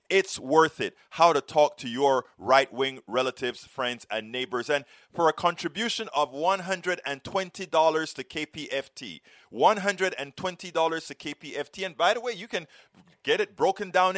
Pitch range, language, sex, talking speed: 145-200 Hz, English, male, 150 wpm